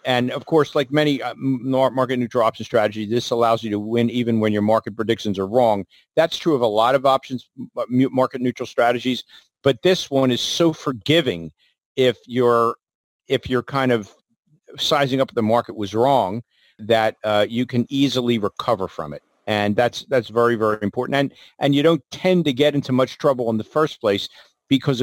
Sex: male